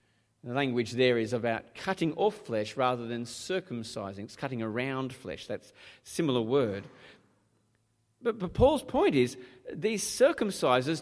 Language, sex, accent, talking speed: English, male, Australian, 140 wpm